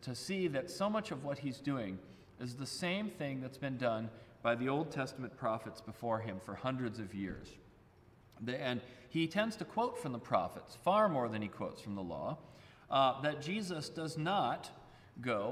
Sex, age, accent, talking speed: male, 40-59, American, 190 wpm